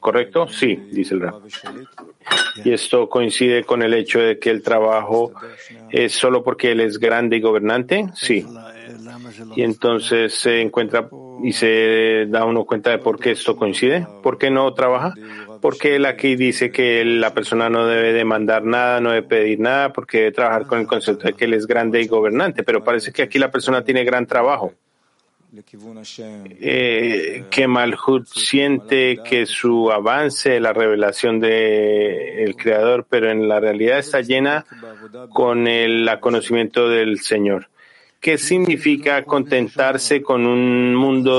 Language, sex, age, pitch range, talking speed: Spanish, male, 40-59, 115-135 Hz, 155 wpm